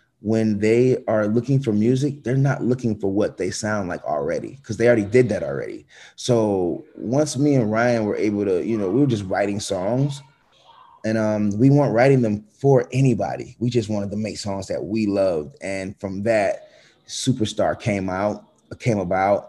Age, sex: 20-39, male